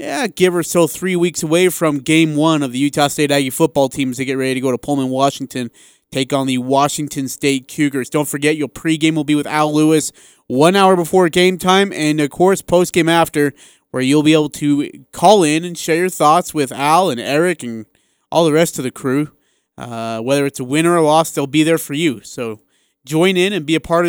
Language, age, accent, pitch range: English, 30-49, American, 130-165 Hz